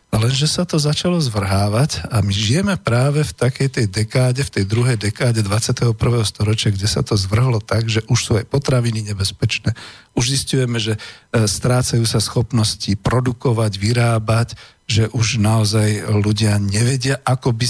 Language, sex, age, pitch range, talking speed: Slovak, male, 50-69, 110-125 Hz, 155 wpm